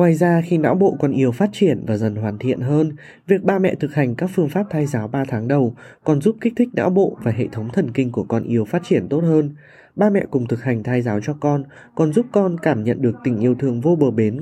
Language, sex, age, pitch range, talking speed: Vietnamese, male, 20-39, 120-170 Hz, 275 wpm